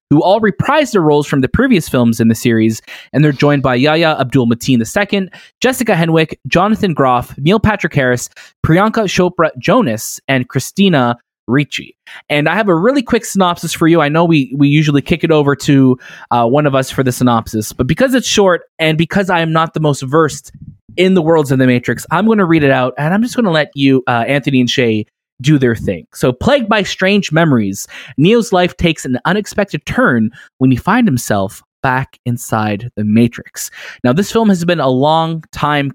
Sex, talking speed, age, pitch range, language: male, 205 wpm, 20-39, 125-170 Hz, English